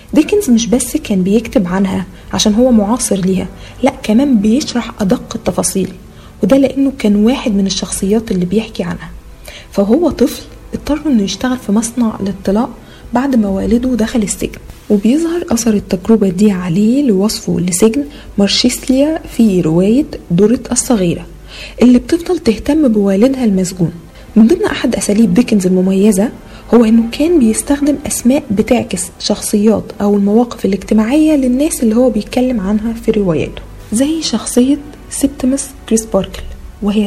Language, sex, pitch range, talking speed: Arabic, female, 200-255 Hz, 135 wpm